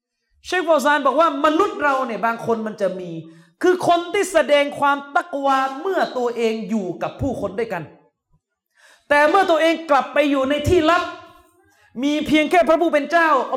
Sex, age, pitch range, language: male, 30-49, 200-300 Hz, Thai